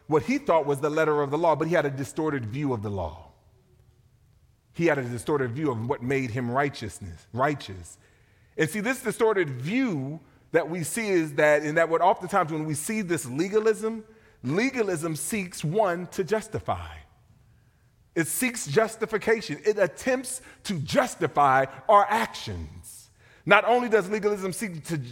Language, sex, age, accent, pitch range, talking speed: English, male, 30-49, American, 115-195 Hz, 160 wpm